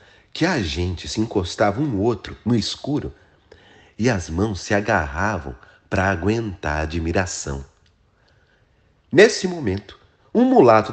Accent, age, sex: Brazilian, 40-59, male